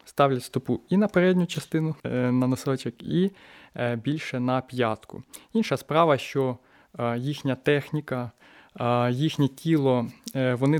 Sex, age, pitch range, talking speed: male, 20-39, 130-155 Hz, 110 wpm